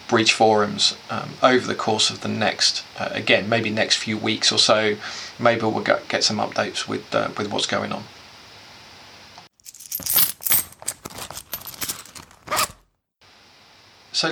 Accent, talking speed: British, 120 wpm